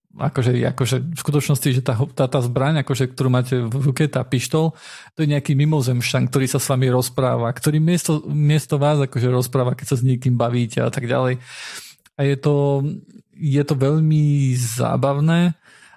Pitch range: 135-185 Hz